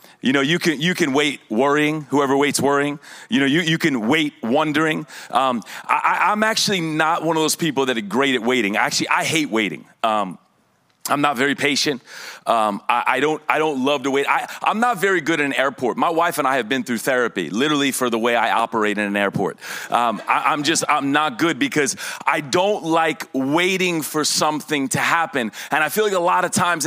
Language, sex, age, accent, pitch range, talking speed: English, male, 30-49, American, 150-200 Hz, 220 wpm